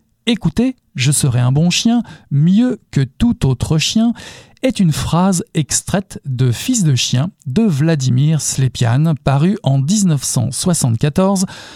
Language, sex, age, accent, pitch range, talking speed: French, male, 50-69, French, 135-185 Hz, 150 wpm